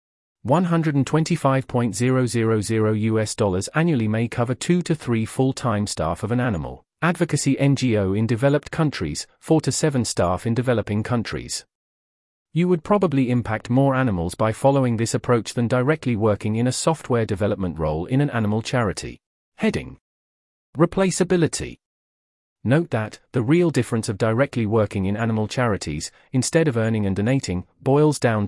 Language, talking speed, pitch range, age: English, 145 wpm, 105-140 Hz, 40-59